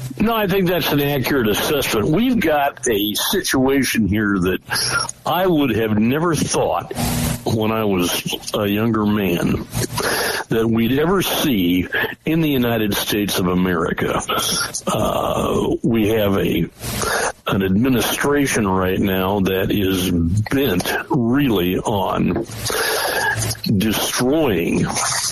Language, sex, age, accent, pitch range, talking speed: English, male, 60-79, American, 95-115 Hz, 115 wpm